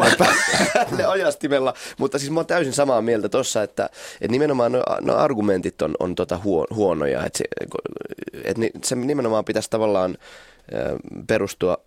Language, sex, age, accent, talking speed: Finnish, male, 20-39, native, 130 wpm